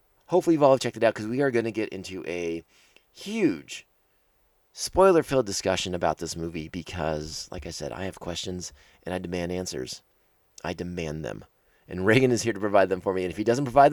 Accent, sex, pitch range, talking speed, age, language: American, male, 95-145 Hz, 205 wpm, 30-49, English